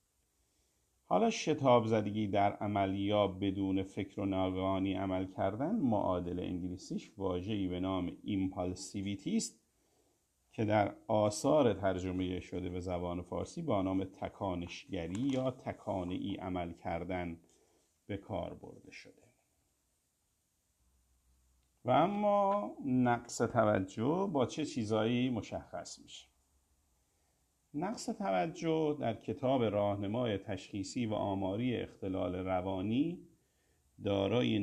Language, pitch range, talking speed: Persian, 90-120 Hz, 95 wpm